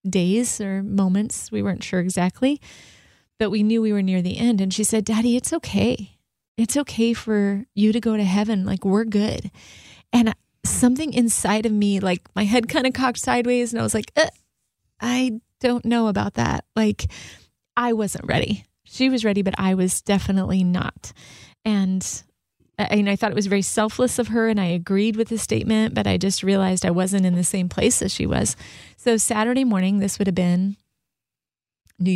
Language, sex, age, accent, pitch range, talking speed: English, female, 30-49, American, 195-230 Hz, 190 wpm